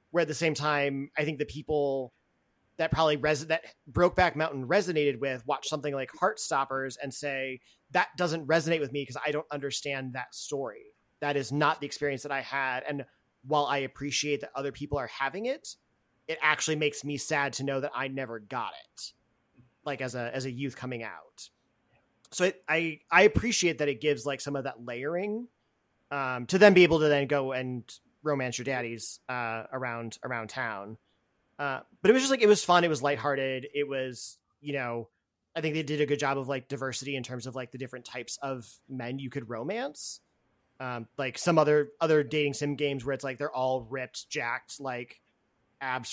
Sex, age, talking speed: male, 30-49, 205 wpm